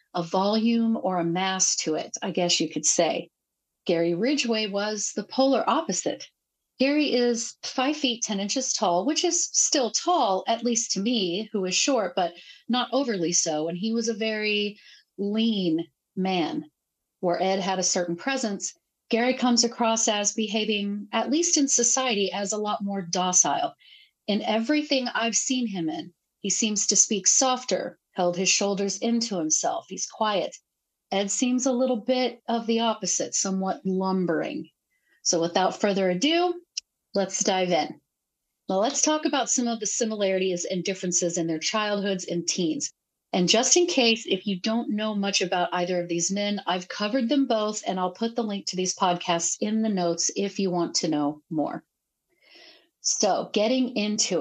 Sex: female